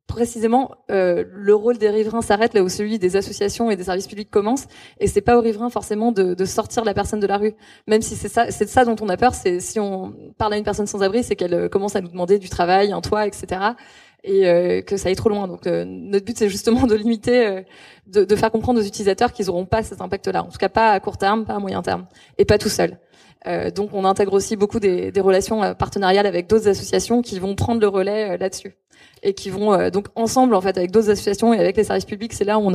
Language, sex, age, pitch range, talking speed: French, female, 20-39, 195-225 Hz, 265 wpm